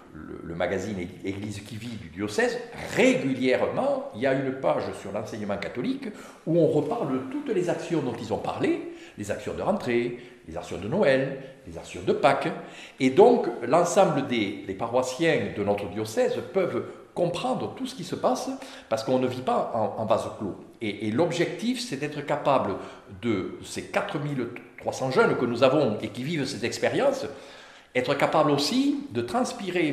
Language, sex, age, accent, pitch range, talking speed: French, male, 50-69, French, 105-175 Hz, 175 wpm